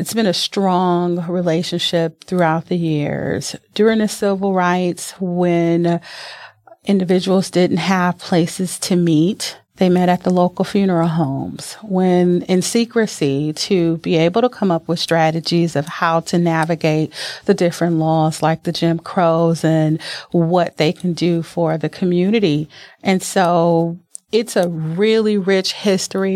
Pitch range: 170-200 Hz